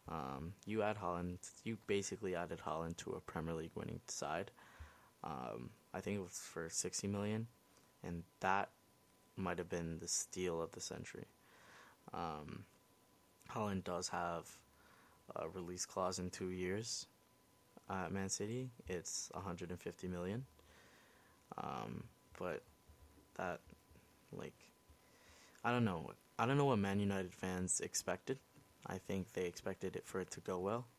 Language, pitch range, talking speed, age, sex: English, 90-105 Hz, 145 wpm, 20-39, male